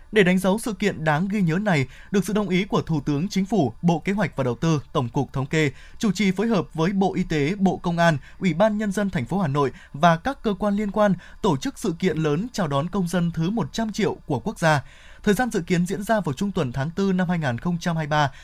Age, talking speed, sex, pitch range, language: 20-39, 265 wpm, male, 145-200 Hz, Vietnamese